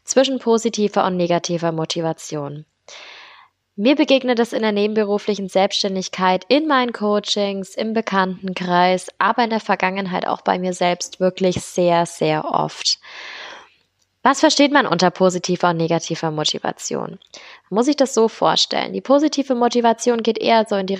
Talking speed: 145 wpm